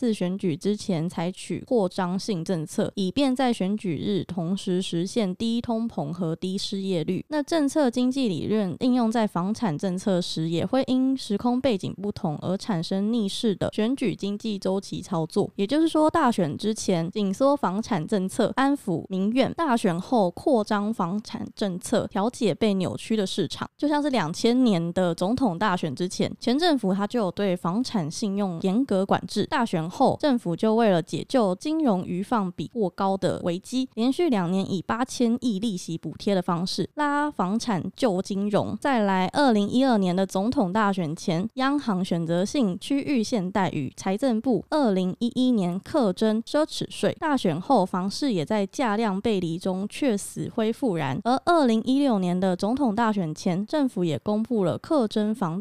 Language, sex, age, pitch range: Chinese, female, 20-39, 185-245 Hz